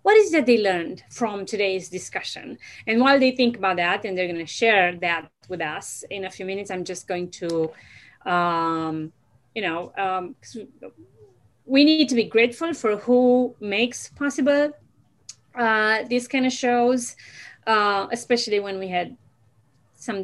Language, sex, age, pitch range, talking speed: English, female, 30-49, 175-235 Hz, 165 wpm